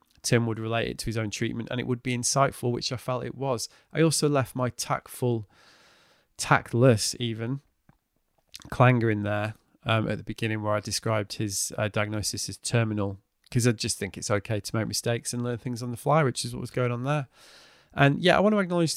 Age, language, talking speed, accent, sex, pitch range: 20-39, English, 210 wpm, British, male, 110-125 Hz